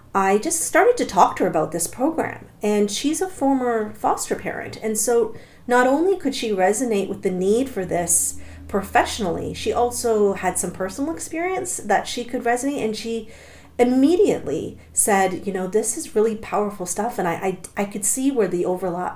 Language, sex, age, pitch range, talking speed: English, female, 40-59, 180-215 Hz, 185 wpm